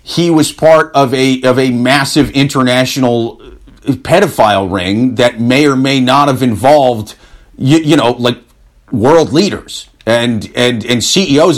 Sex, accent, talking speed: male, American, 145 wpm